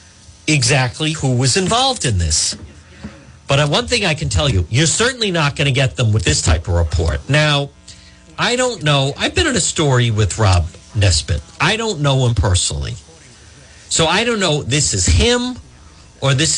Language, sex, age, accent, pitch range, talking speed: English, male, 50-69, American, 95-155 Hz, 185 wpm